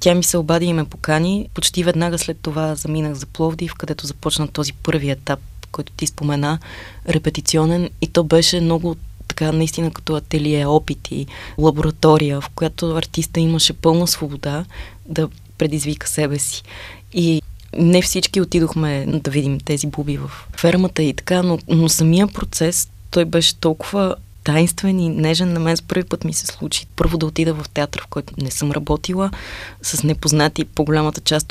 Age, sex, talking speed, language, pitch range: 20-39, female, 165 wpm, Bulgarian, 145-165 Hz